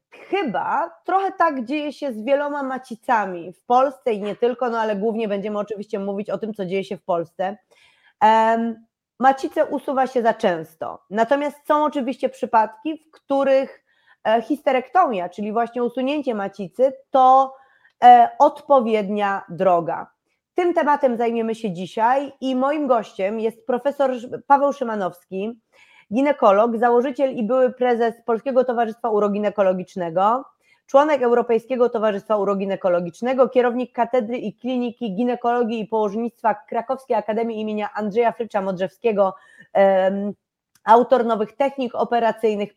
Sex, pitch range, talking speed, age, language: female, 215-270 Hz, 120 wpm, 30-49, Polish